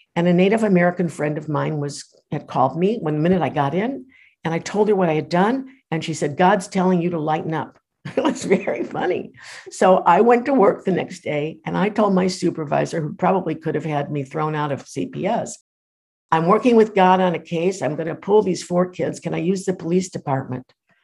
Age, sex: 60-79, female